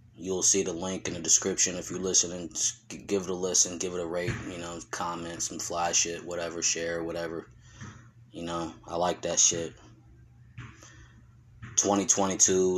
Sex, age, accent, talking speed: male, 20-39, American, 165 wpm